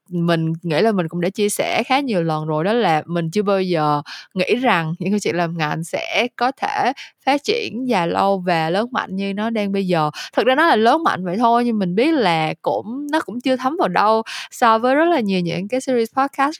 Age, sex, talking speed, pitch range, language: 20-39, female, 245 wpm, 175-245 Hz, Vietnamese